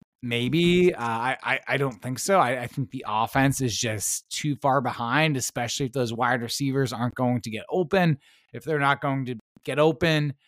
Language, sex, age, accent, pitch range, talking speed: English, male, 20-39, American, 120-155 Hz, 195 wpm